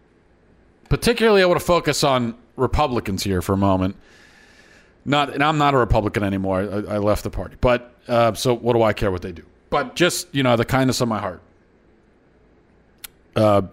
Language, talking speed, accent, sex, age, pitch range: English, 190 wpm, American, male, 40-59, 105-135 Hz